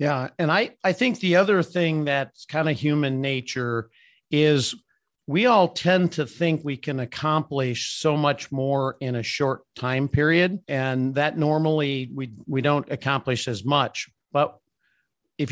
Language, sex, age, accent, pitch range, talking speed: English, male, 50-69, American, 125-155 Hz, 160 wpm